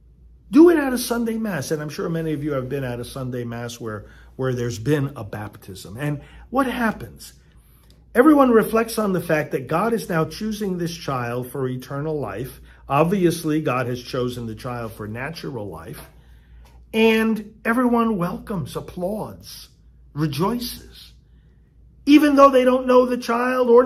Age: 50-69